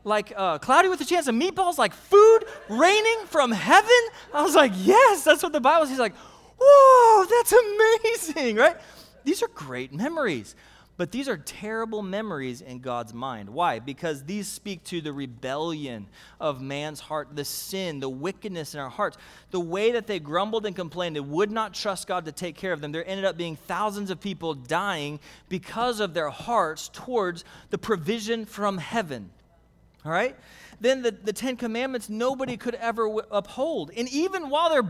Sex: male